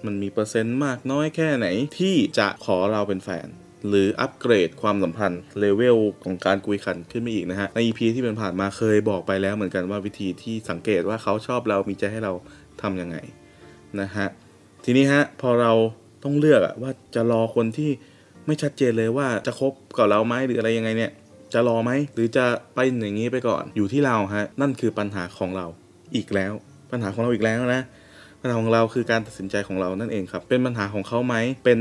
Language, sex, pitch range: Thai, male, 95-120 Hz